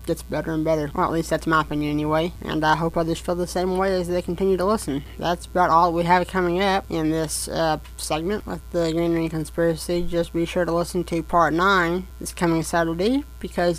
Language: English